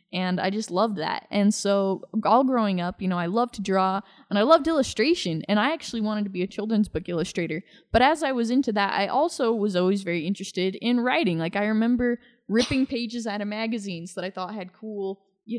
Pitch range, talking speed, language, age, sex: 185-230 Hz, 225 wpm, English, 10-29, female